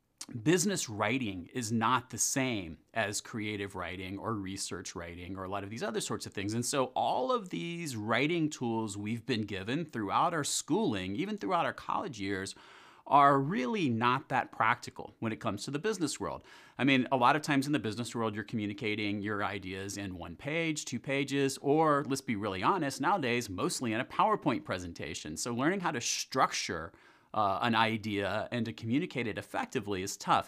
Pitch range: 105-140 Hz